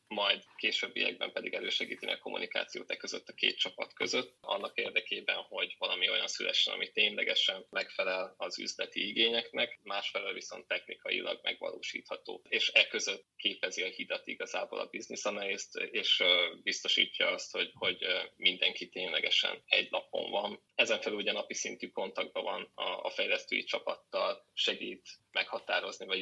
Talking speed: 140 wpm